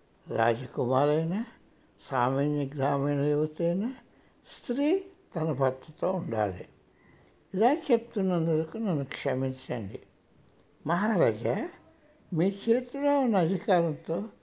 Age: 60-79